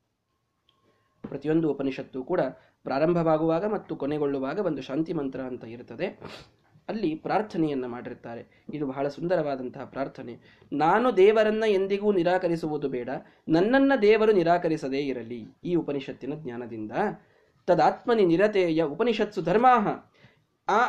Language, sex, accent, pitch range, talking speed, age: Kannada, male, native, 135-200 Hz, 100 wpm, 20-39